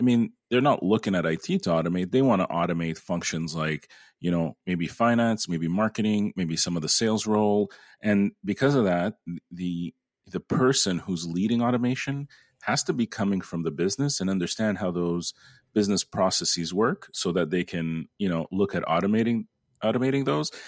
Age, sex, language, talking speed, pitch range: 30-49, male, English, 180 wpm, 85-105 Hz